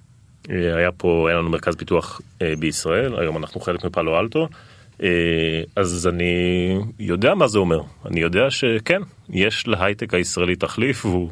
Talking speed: 140 wpm